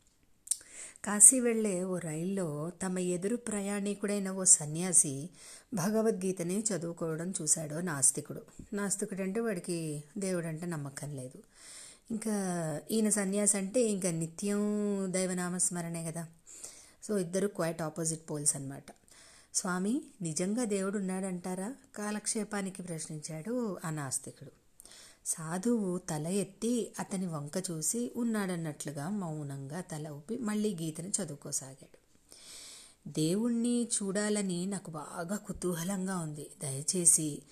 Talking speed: 100 wpm